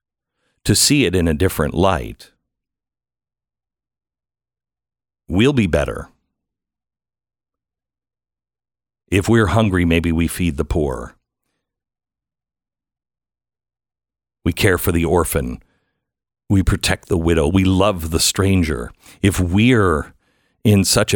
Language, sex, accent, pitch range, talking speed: English, male, American, 80-100 Hz, 100 wpm